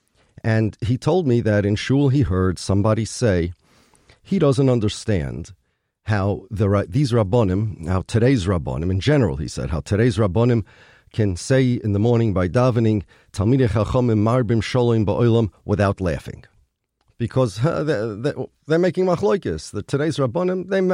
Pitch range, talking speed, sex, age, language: 100-135 Hz, 140 wpm, male, 40-59, English